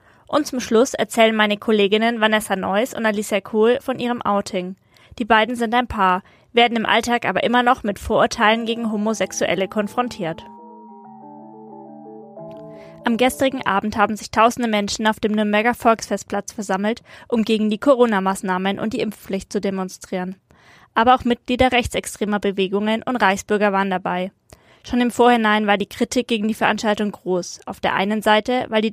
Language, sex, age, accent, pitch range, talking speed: German, female, 20-39, American, 200-235 Hz, 160 wpm